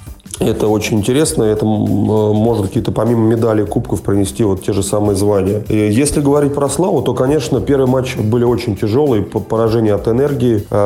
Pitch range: 100-120 Hz